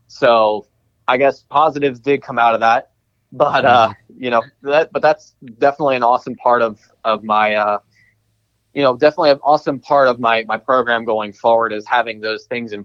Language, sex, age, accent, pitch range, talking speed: English, male, 20-39, American, 105-120 Hz, 190 wpm